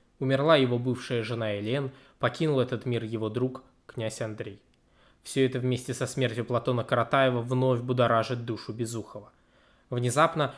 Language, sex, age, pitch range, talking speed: Russian, male, 20-39, 120-135 Hz, 135 wpm